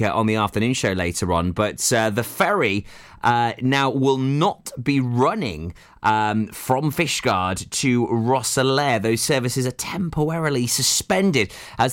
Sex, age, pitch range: male, 20-39, 105-135 Hz